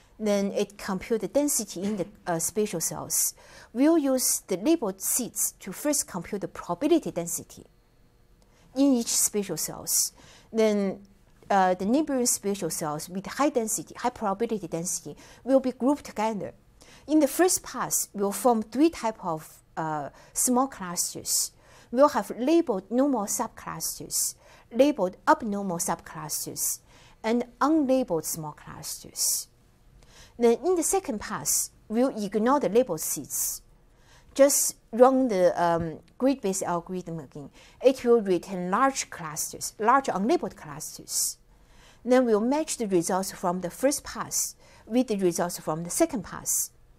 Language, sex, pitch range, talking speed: English, female, 180-255 Hz, 135 wpm